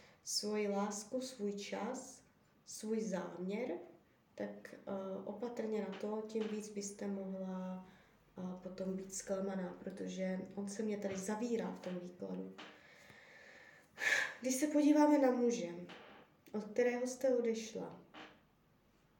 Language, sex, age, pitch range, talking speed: Czech, female, 20-39, 195-220 Hz, 115 wpm